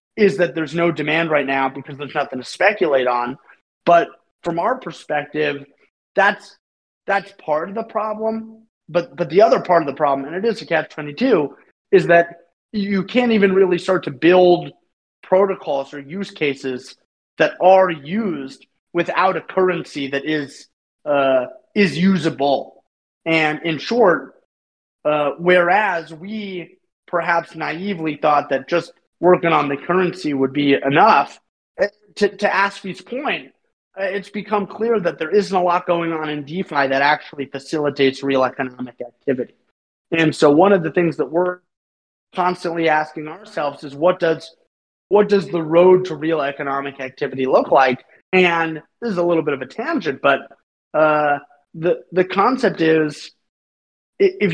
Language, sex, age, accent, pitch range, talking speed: English, male, 30-49, American, 145-190 Hz, 155 wpm